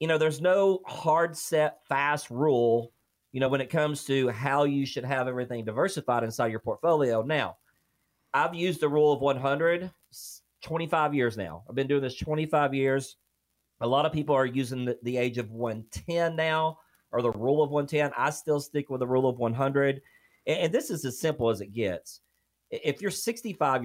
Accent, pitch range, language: American, 120-155 Hz, English